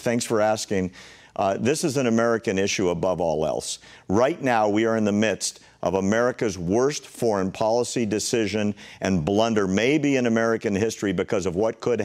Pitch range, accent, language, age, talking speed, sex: 100-125 Hz, American, English, 50-69, 175 wpm, male